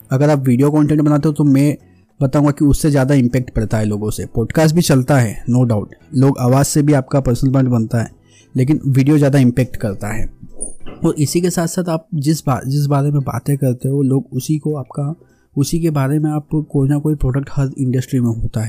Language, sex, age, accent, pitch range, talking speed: Hindi, male, 20-39, native, 120-145 Hz, 225 wpm